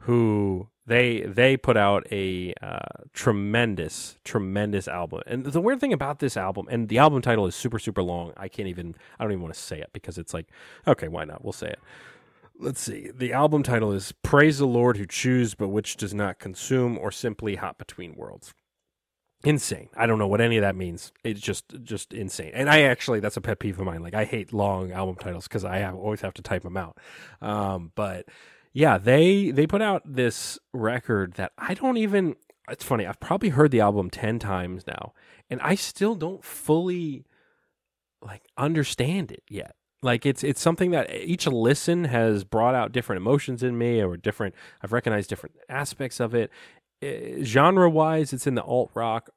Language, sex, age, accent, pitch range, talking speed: English, male, 30-49, American, 100-135 Hz, 200 wpm